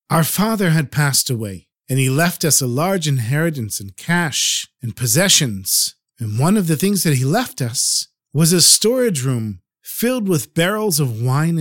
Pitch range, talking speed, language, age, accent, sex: 135-200 Hz, 180 wpm, English, 50-69, American, male